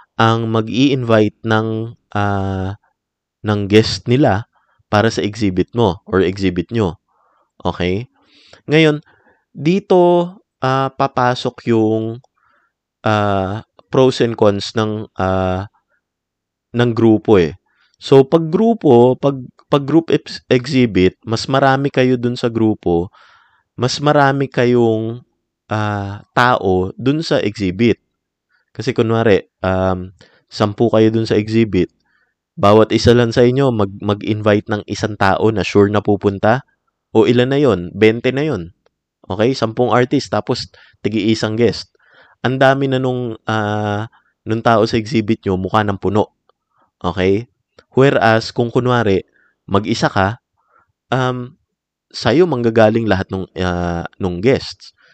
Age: 20-39